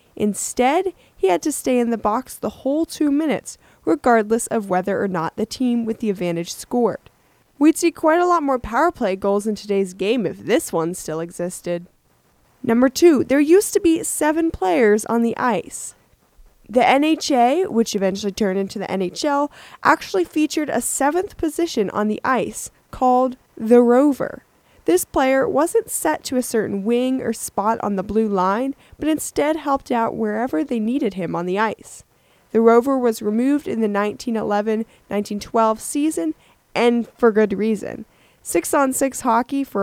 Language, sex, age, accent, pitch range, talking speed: English, female, 10-29, American, 215-290 Hz, 165 wpm